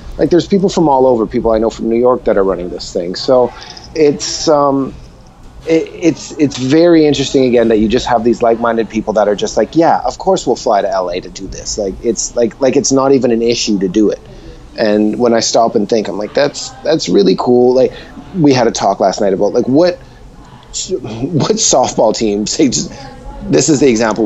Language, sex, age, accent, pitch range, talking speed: English, male, 30-49, American, 110-135 Hz, 225 wpm